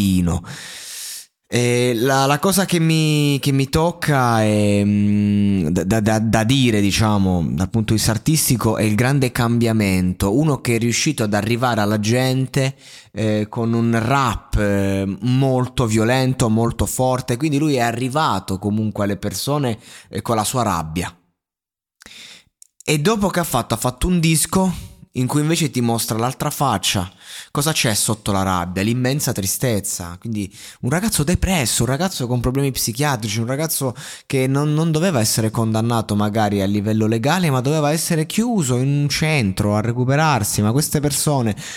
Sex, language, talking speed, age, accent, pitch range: male, Italian, 155 wpm, 20-39, native, 105-140 Hz